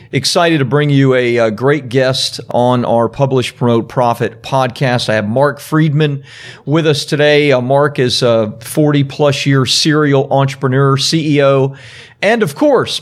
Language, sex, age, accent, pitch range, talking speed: English, male, 40-59, American, 130-160 Hz, 150 wpm